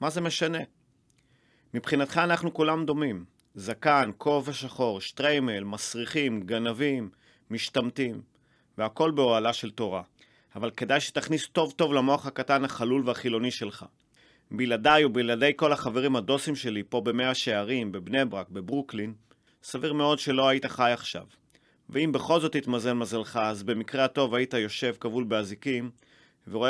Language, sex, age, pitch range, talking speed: Hebrew, male, 30-49, 115-145 Hz, 130 wpm